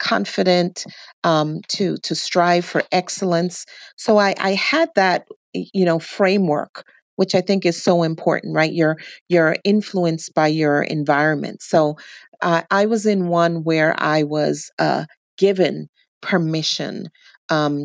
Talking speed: 140 wpm